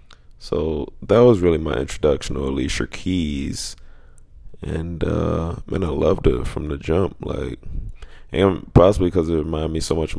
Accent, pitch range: American, 75-90 Hz